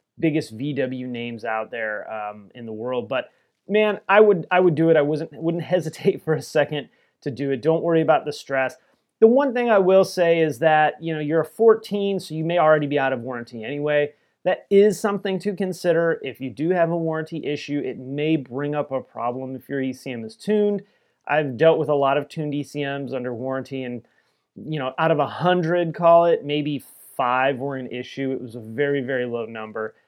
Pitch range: 130-170 Hz